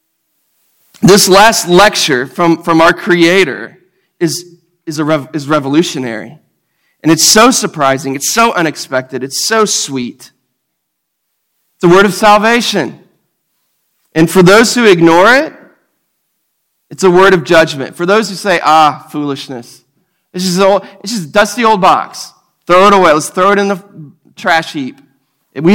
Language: English